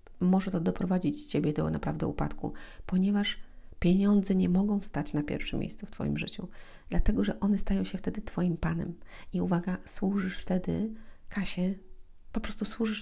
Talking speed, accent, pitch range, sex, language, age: 155 wpm, native, 165-190 Hz, female, Polish, 40-59